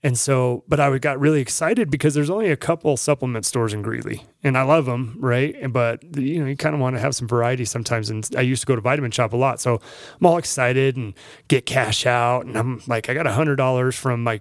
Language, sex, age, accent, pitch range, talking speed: English, male, 30-49, American, 115-140 Hz, 260 wpm